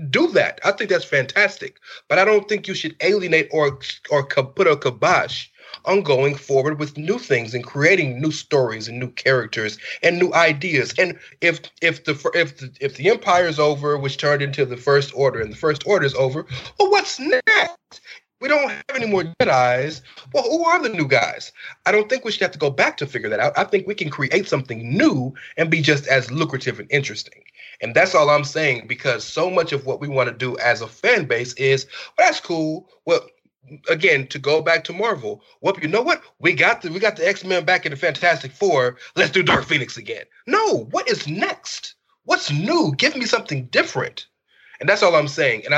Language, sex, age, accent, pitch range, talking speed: English, male, 30-49, American, 135-215 Hz, 215 wpm